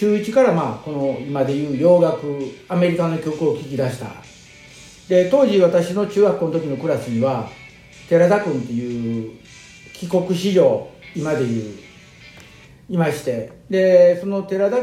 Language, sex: Japanese, male